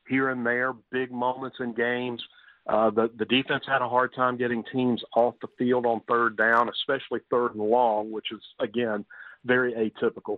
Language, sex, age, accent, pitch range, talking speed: English, male, 40-59, American, 110-125 Hz, 185 wpm